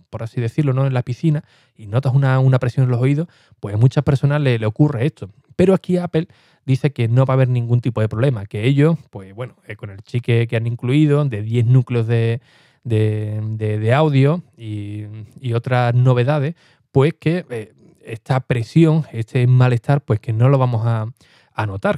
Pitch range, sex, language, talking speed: 115-140 Hz, male, Spanish, 195 wpm